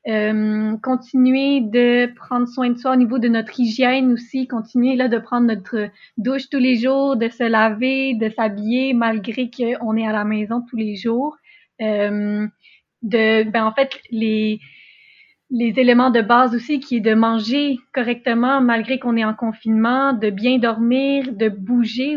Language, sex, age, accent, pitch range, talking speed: French, female, 30-49, Canadian, 220-255 Hz, 170 wpm